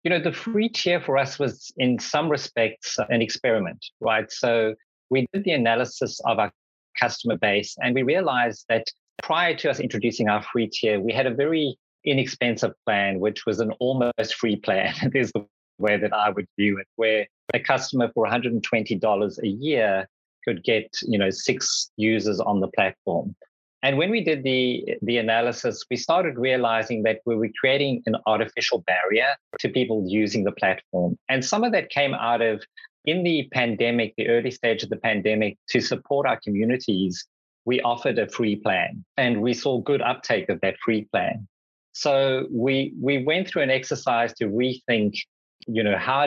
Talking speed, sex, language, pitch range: 180 wpm, male, English, 105-130 Hz